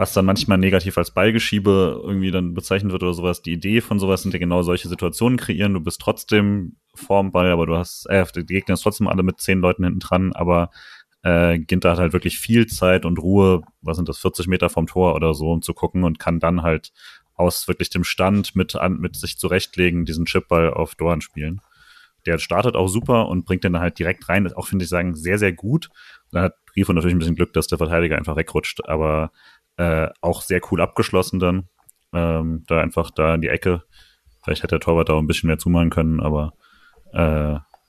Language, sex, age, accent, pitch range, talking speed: German, male, 30-49, German, 80-95 Hz, 220 wpm